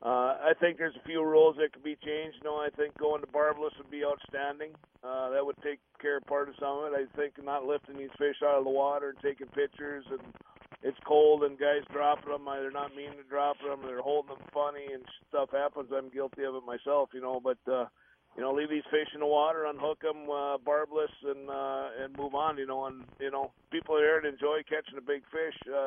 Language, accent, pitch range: English, American, 130-150 Hz